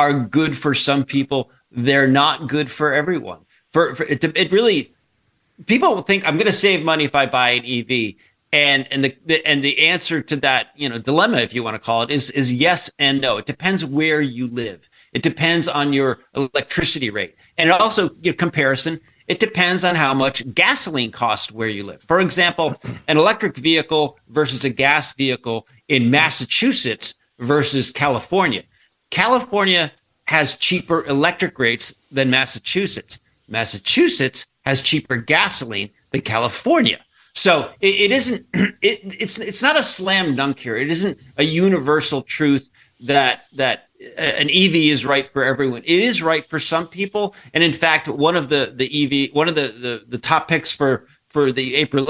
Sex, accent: male, American